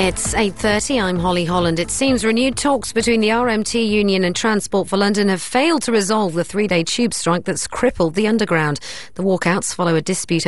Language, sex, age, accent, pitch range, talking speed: English, female, 40-59, British, 170-220 Hz, 195 wpm